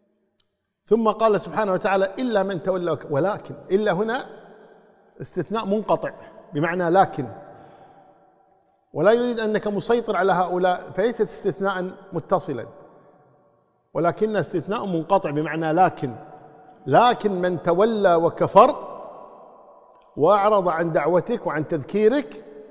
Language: Arabic